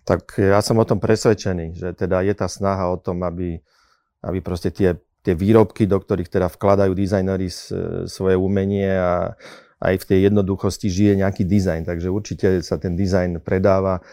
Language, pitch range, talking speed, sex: Czech, 95-105 Hz, 170 wpm, male